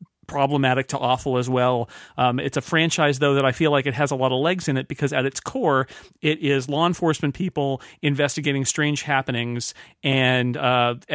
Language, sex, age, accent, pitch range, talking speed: English, male, 40-59, American, 125-155 Hz, 195 wpm